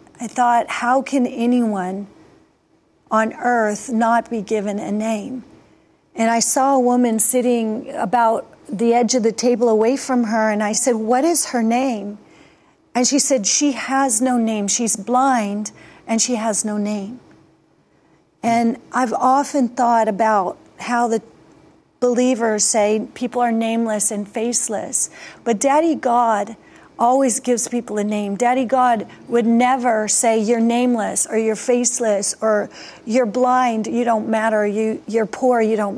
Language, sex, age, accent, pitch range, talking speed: English, female, 40-59, American, 215-245 Hz, 150 wpm